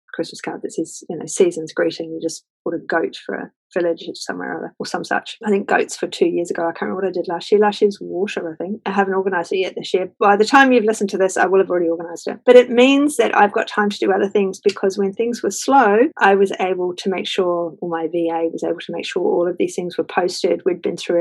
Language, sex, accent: English, female, Australian